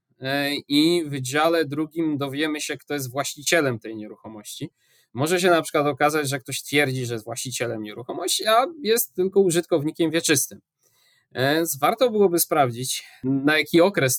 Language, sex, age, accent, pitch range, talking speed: Polish, male, 20-39, native, 130-160 Hz, 150 wpm